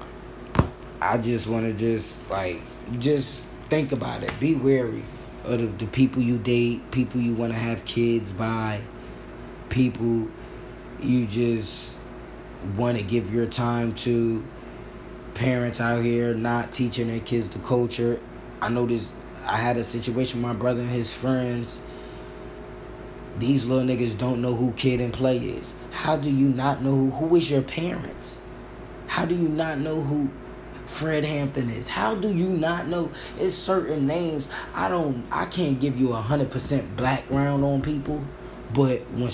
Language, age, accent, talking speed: English, 20-39, American, 160 wpm